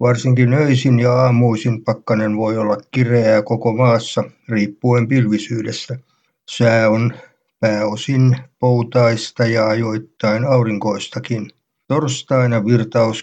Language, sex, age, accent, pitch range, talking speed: Finnish, male, 60-79, native, 110-130 Hz, 95 wpm